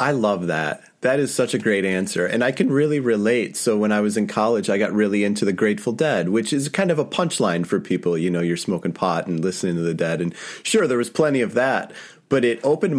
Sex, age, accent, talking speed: male, 30-49, American, 255 wpm